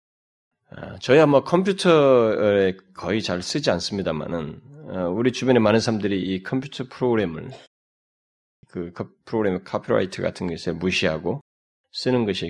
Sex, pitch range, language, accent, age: male, 95-130 Hz, Korean, native, 20-39